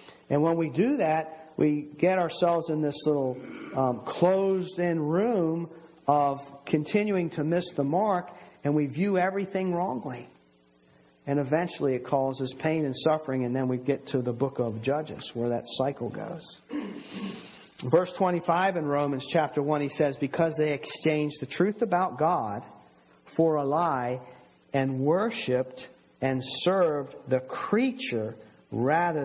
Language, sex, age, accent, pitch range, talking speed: English, male, 50-69, American, 125-180 Hz, 145 wpm